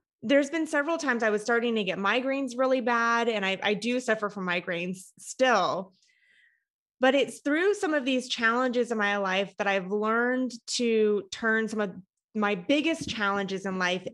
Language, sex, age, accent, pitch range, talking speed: English, female, 20-39, American, 195-235 Hz, 180 wpm